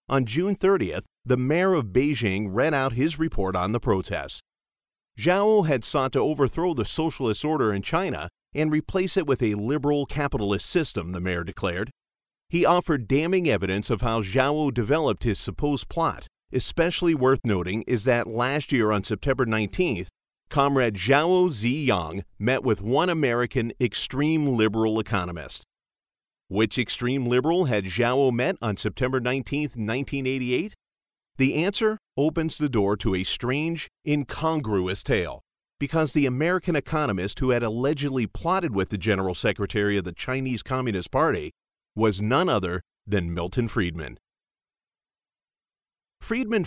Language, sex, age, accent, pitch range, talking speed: English, male, 40-59, American, 105-150 Hz, 140 wpm